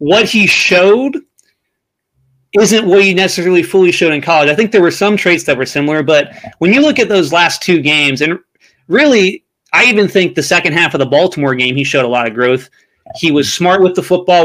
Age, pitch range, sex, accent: 30-49, 135-180 Hz, male, American